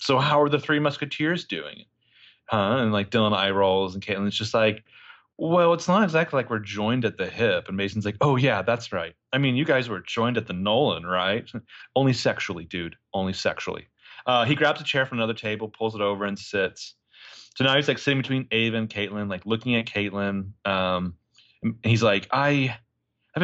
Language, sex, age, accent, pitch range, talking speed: English, male, 30-49, American, 100-135 Hz, 205 wpm